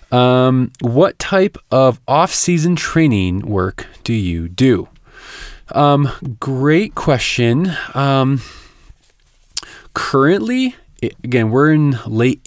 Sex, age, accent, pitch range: male, 20-39, American, 100-135 Hz